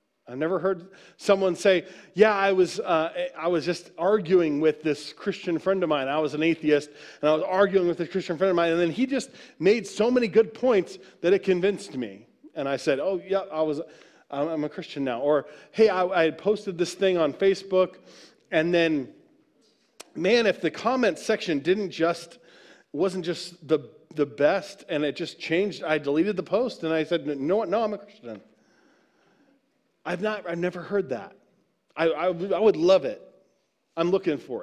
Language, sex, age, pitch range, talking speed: English, male, 40-59, 150-195 Hz, 195 wpm